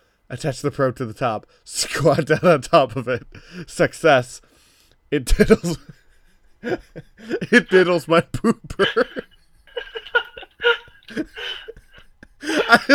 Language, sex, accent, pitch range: English, male, American, 135-205 Hz